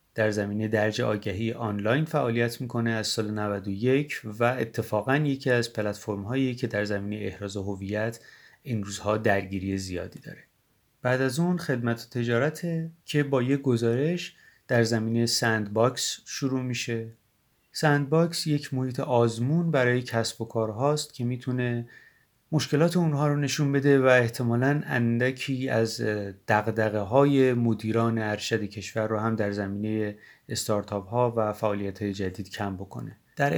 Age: 30-49